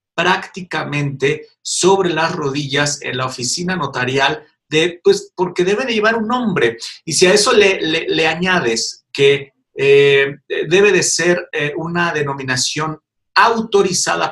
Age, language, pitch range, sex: 50-69, Spanish, 140-185 Hz, male